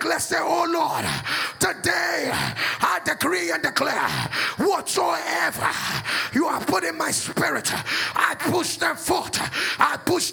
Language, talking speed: English, 130 wpm